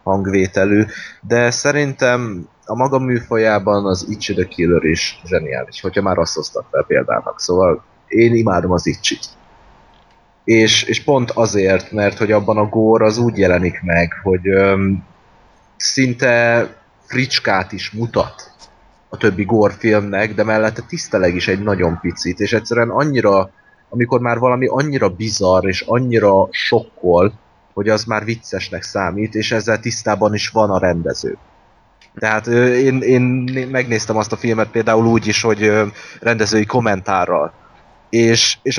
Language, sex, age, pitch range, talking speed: Hungarian, male, 30-49, 100-125 Hz, 140 wpm